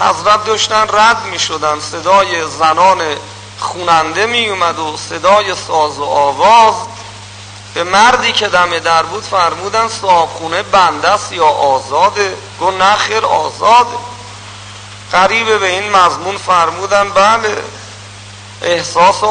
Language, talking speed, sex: Persian, 110 wpm, male